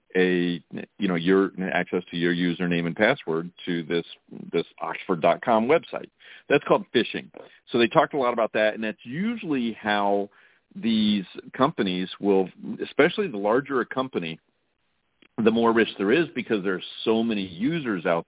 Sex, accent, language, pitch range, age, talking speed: male, American, English, 90-105 Hz, 50-69, 160 wpm